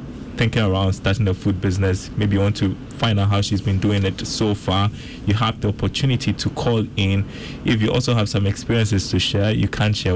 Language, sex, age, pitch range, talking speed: English, male, 20-39, 95-115 Hz, 220 wpm